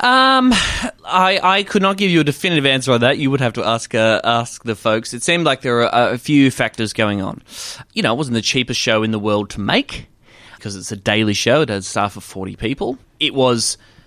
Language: English